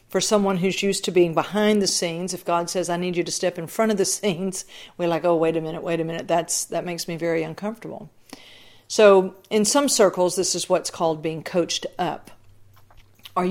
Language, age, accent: English, 50-69, American